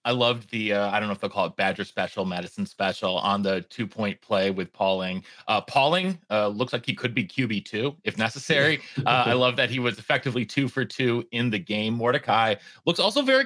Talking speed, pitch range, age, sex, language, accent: 220 wpm, 100-130 Hz, 30-49, male, English, American